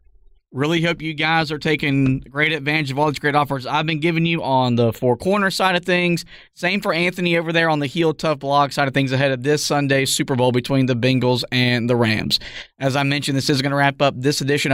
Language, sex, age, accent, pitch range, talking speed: English, male, 20-39, American, 140-170 Hz, 245 wpm